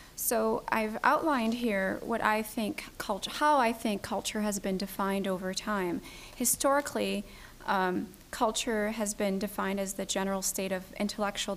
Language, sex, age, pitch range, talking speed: English, female, 30-49, 195-220 Hz, 150 wpm